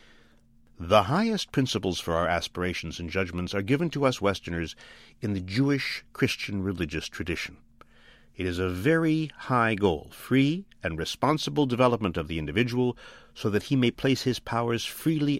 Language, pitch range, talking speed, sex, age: English, 90-135 Hz, 155 wpm, male, 50-69